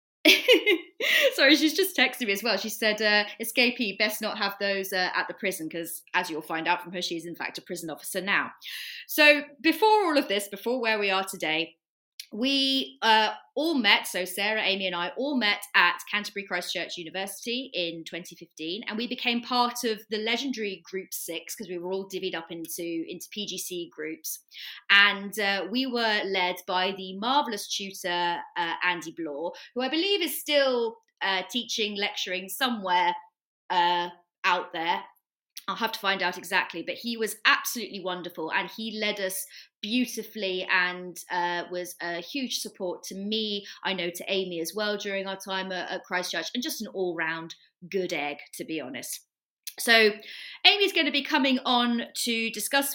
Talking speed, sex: 180 wpm, female